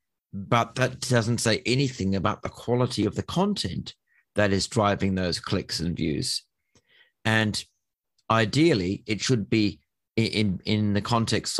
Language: English